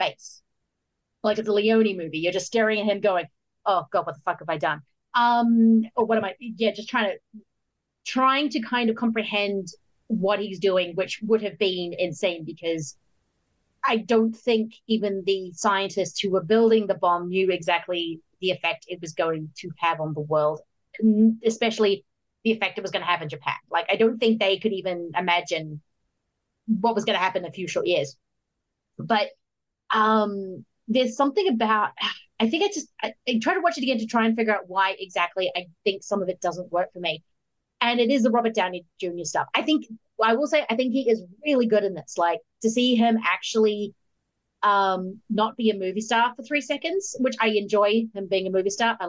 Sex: female